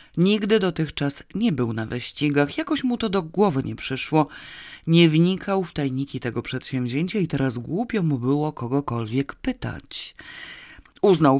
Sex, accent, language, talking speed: female, native, Polish, 140 wpm